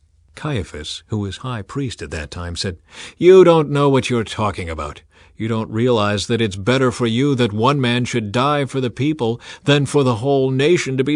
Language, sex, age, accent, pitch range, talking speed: English, male, 50-69, American, 95-135 Hz, 210 wpm